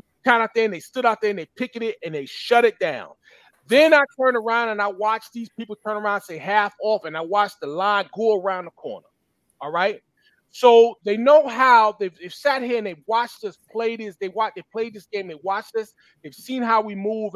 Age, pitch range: 30-49, 195-230 Hz